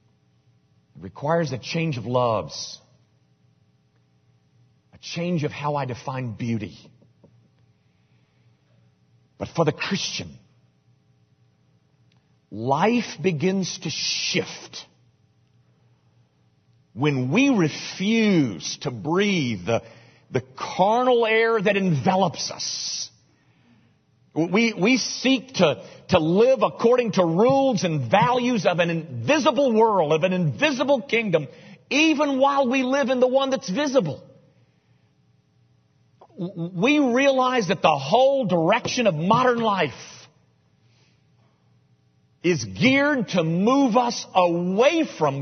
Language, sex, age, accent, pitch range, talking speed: English, male, 40-59, American, 140-230 Hz, 100 wpm